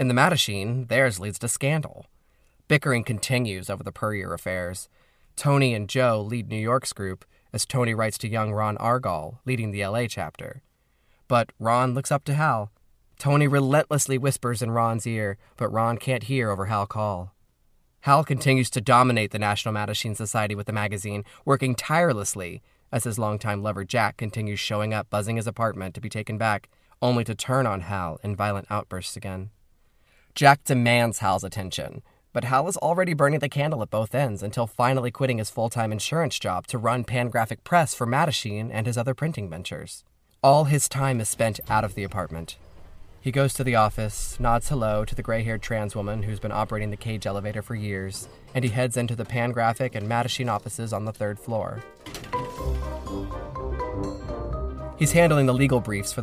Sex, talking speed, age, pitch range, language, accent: male, 180 wpm, 20-39, 105-125 Hz, English, American